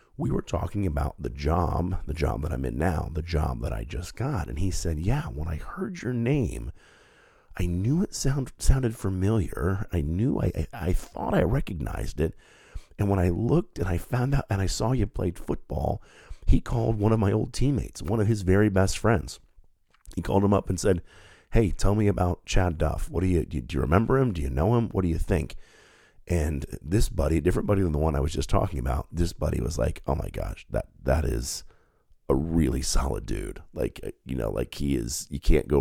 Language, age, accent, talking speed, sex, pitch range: English, 40-59, American, 225 wpm, male, 75-105 Hz